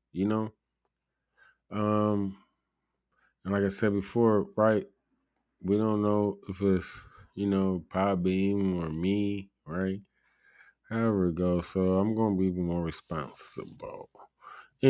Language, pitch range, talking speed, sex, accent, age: English, 90-105 Hz, 125 wpm, male, American, 20-39